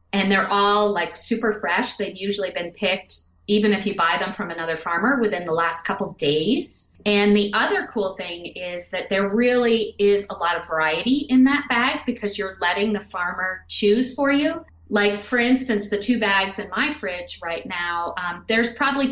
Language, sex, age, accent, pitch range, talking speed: English, female, 40-59, American, 175-215 Hz, 200 wpm